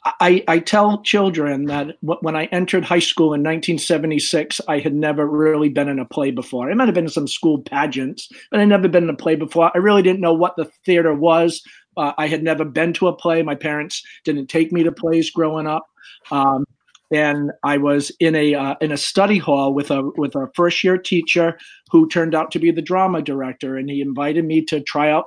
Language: English